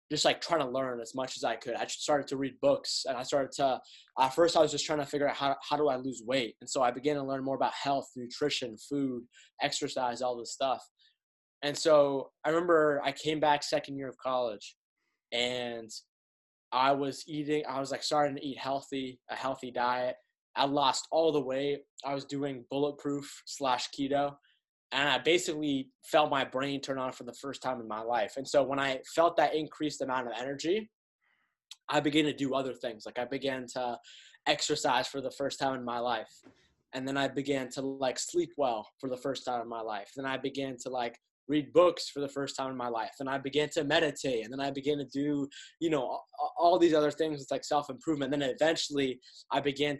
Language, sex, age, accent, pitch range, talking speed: English, male, 20-39, American, 130-145 Hz, 220 wpm